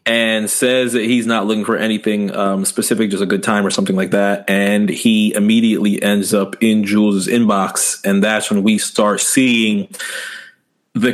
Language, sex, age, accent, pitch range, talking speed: English, male, 30-49, American, 110-155 Hz, 180 wpm